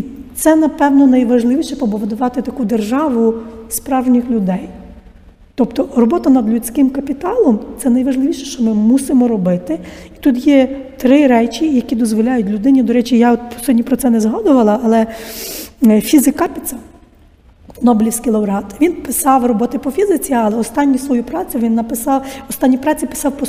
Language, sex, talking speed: Ukrainian, female, 145 wpm